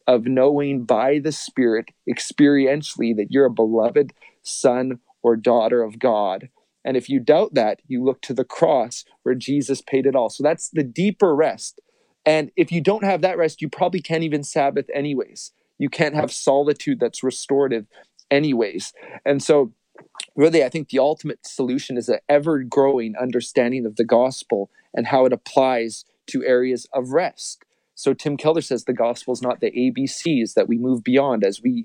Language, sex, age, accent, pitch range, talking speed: English, male, 30-49, American, 125-155 Hz, 175 wpm